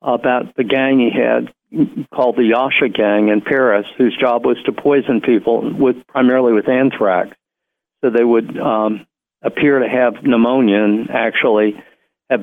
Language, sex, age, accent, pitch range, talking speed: English, male, 50-69, American, 110-125 Hz, 155 wpm